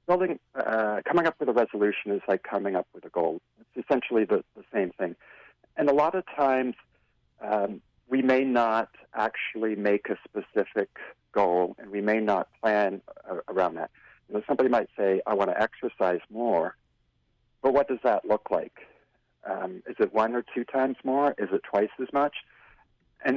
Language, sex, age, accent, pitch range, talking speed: English, male, 50-69, American, 95-130 Hz, 185 wpm